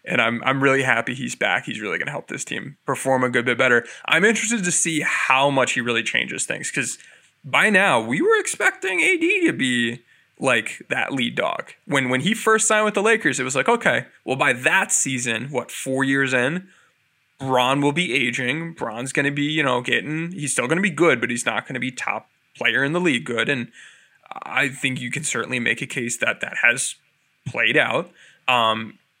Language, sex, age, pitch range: English, male, 20-39, 125-160 Hz